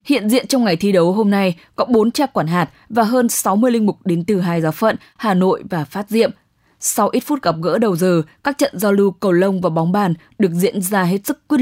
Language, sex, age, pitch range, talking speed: English, female, 10-29, 170-225 Hz, 255 wpm